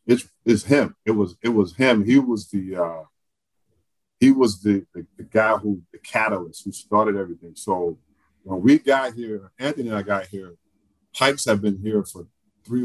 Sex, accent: male, American